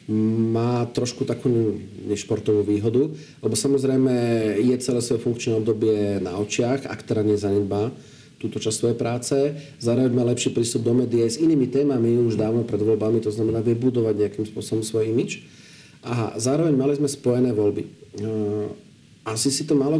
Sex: male